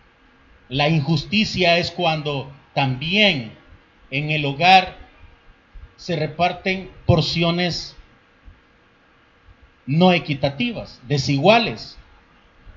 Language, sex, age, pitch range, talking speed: Spanish, male, 40-59, 130-170 Hz, 65 wpm